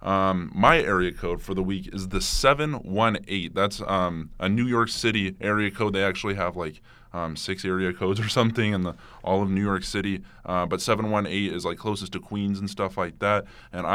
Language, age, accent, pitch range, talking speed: English, 20-39, American, 90-105 Hz, 200 wpm